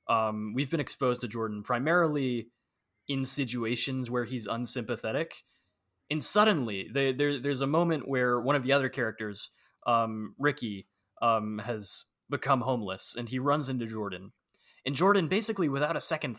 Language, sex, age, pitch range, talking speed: English, male, 20-39, 110-145 Hz, 145 wpm